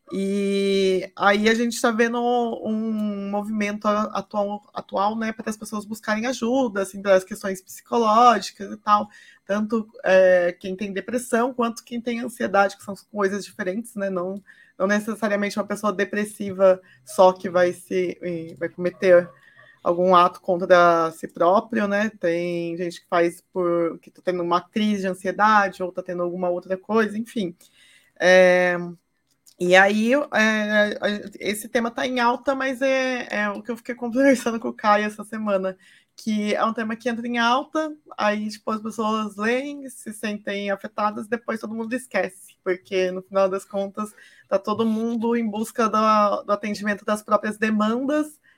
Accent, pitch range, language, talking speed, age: Brazilian, 190-225 Hz, Portuguese, 160 wpm, 20-39